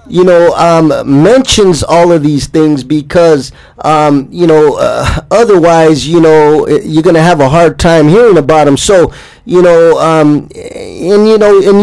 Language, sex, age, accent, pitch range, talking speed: English, male, 20-39, American, 145-185 Hz, 175 wpm